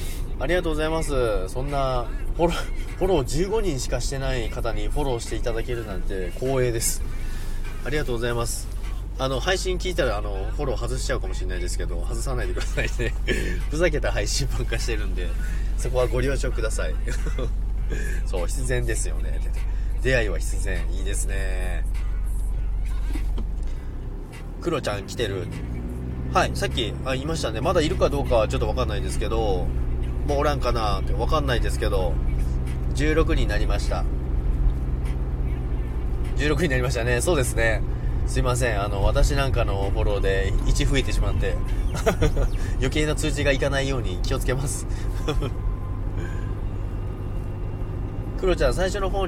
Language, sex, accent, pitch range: Japanese, male, native, 90-125 Hz